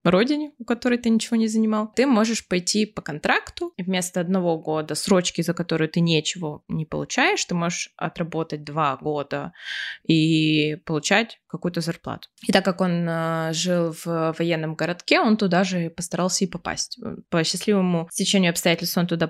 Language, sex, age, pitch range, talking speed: Ukrainian, female, 20-39, 170-210 Hz, 160 wpm